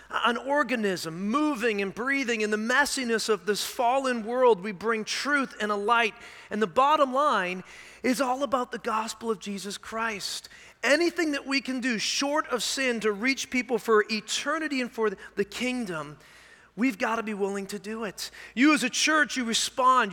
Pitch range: 205-250 Hz